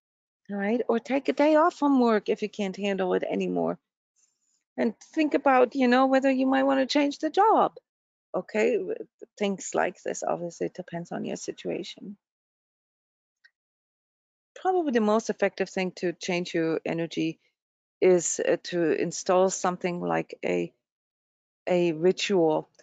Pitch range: 175-235 Hz